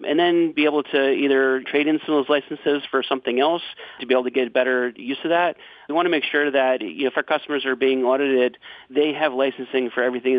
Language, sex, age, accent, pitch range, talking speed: English, male, 40-59, American, 130-150 Hz, 235 wpm